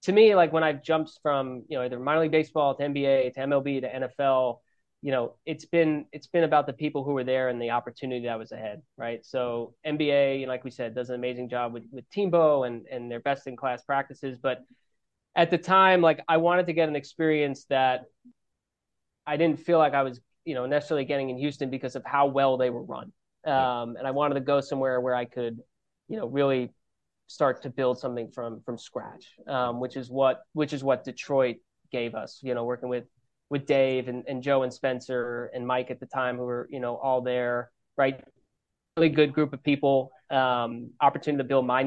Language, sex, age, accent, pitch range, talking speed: English, male, 20-39, American, 125-150 Hz, 220 wpm